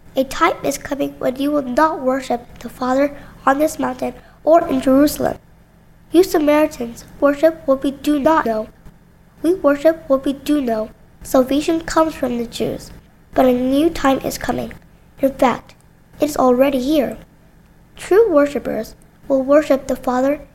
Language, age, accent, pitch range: Korean, 10-29, American, 250-305 Hz